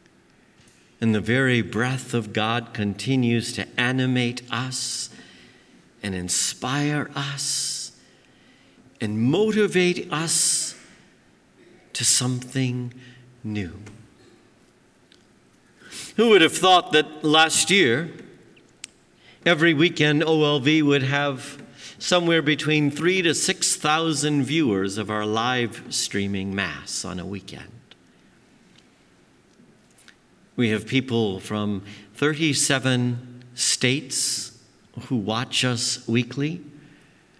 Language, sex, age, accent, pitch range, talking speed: English, male, 50-69, American, 105-145 Hz, 90 wpm